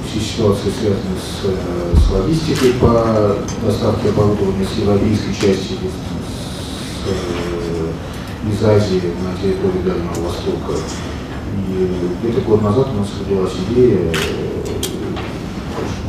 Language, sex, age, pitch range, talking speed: Russian, male, 40-59, 90-105 Hz, 110 wpm